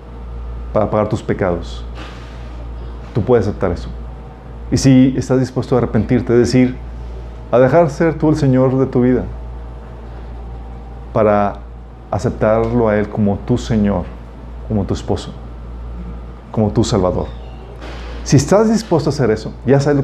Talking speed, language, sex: 140 wpm, Spanish, male